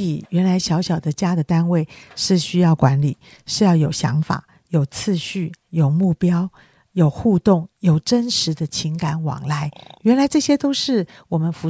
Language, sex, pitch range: Chinese, female, 155-190 Hz